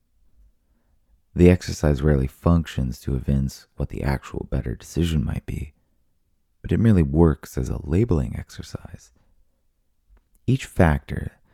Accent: American